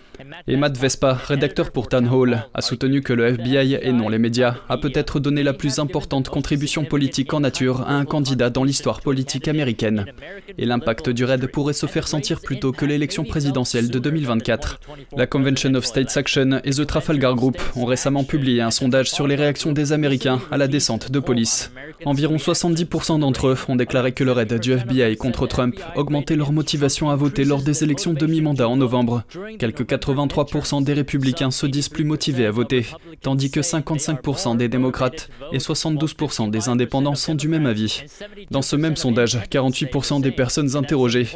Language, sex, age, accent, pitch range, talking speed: French, male, 20-39, French, 125-145 Hz, 185 wpm